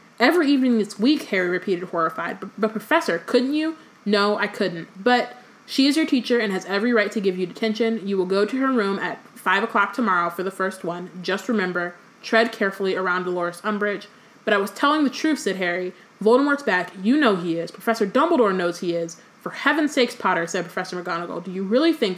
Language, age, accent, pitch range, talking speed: English, 20-39, American, 185-235 Hz, 210 wpm